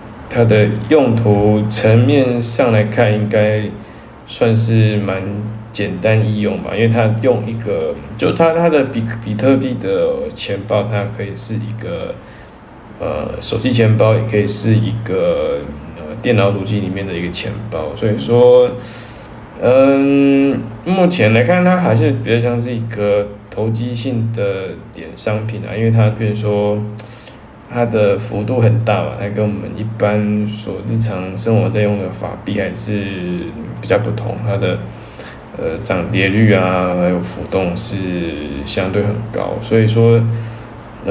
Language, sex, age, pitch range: Chinese, male, 20-39, 105-115 Hz